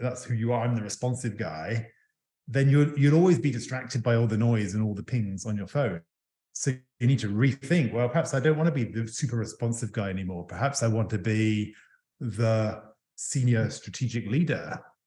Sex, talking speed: male, 205 wpm